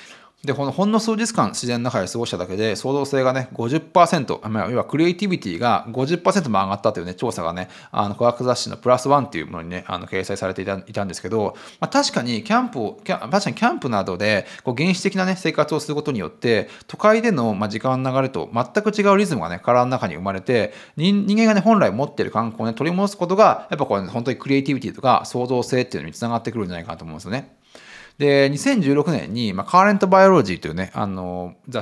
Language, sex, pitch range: Japanese, male, 100-170 Hz